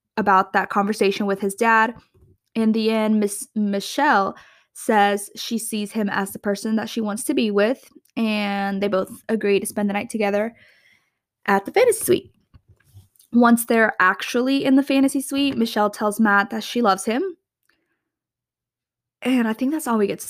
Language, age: English, 10-29